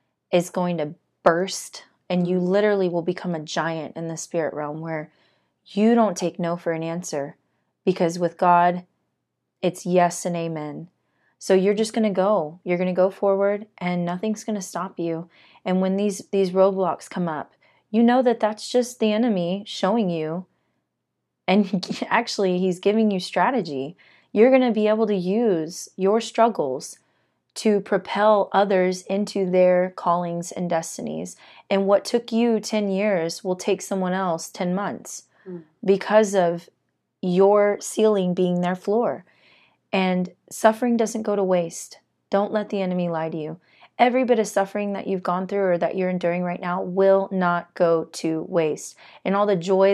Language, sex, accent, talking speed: English, female, American, 170 wpm